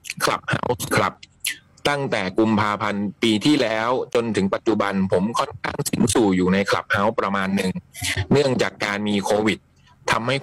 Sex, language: male, Thai